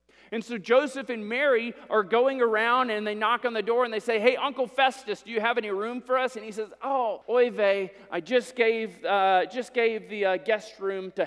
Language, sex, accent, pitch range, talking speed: English, male, American, 195-265 Hz, 230 wpm